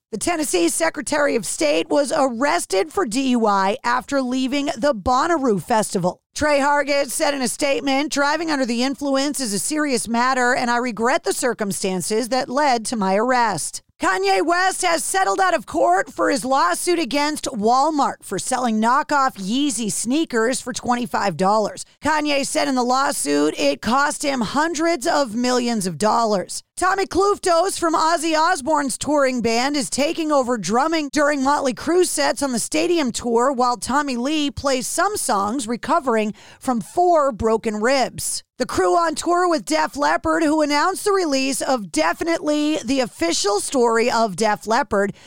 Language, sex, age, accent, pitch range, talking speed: English, female, 40-59, American, 240-330 Hz, 160 wpm